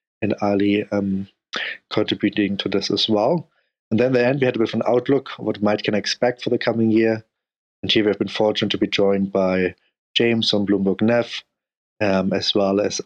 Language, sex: English, male